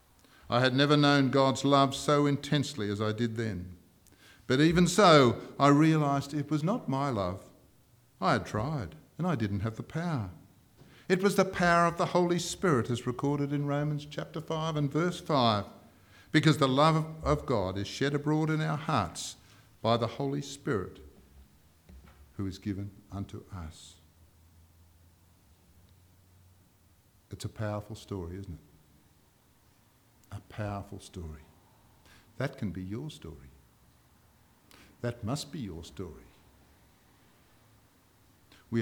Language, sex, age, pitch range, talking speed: English, male, 50-69, 95-140 Hz, 135 wpm